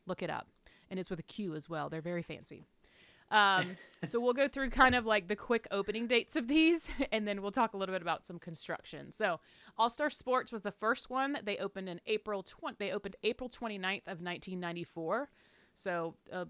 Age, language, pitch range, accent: 30-49, English, 170-215 Hz, American